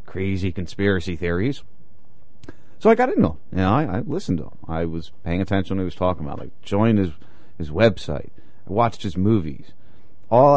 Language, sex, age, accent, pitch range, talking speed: English, male, 40-59, American, 85-110 Hz, 200 wpm